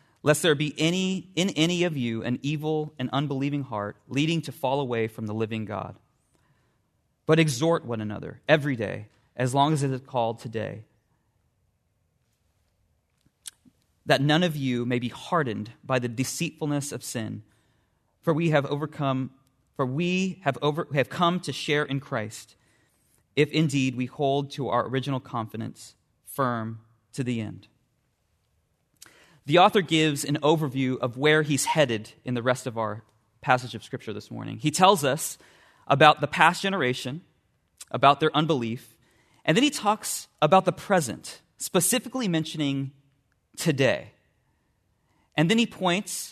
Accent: American